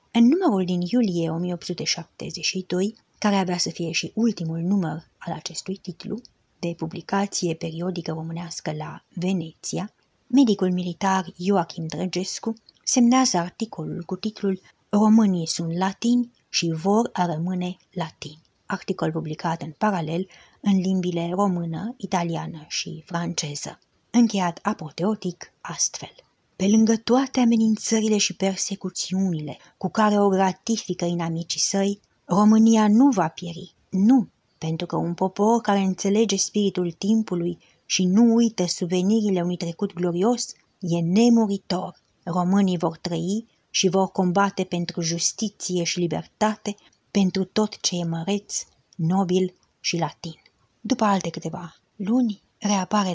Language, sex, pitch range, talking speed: English, female, 170-205 Hz, 120 wpm